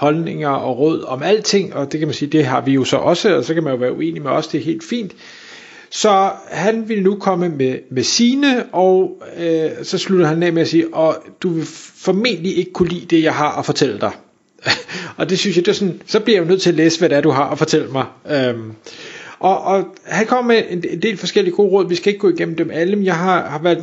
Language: Danish